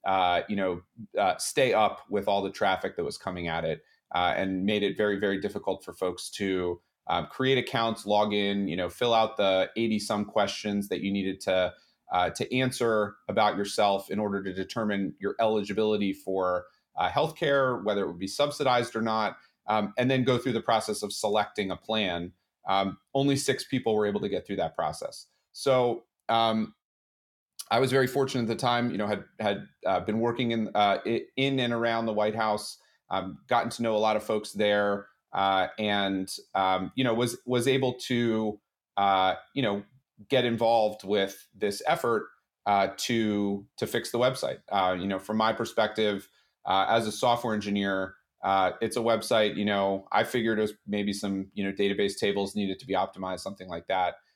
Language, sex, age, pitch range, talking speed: English, male, 30-49, 100-115 Hz, 195 wpm